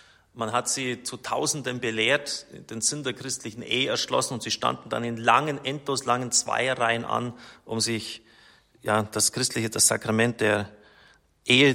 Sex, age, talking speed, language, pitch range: male, 30-49, 160 wpm, German, 110-125 Hz